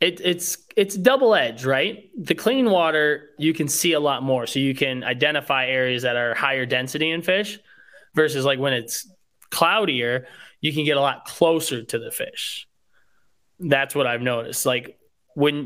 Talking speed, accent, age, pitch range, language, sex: 175 wpm, American, 20-39, 130-160 Hz, English, male